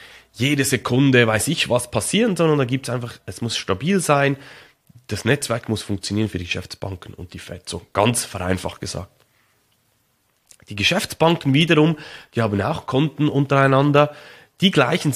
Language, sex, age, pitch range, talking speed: German, male, 30-49, 105-150 Hz, 150 wpm